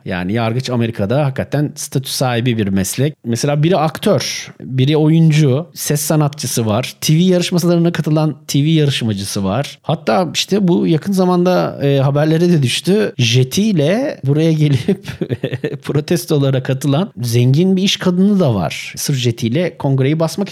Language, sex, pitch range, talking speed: Turkish, male, 120-160 Hz, 135 wpm